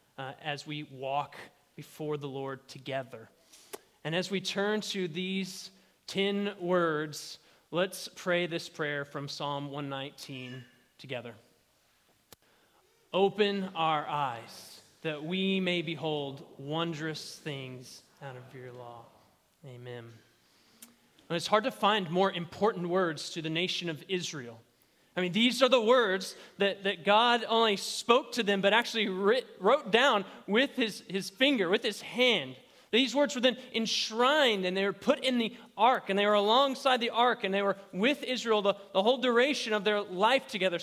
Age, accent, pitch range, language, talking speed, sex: 30-49, American, 160-230 Hz, English, 155 wpm, male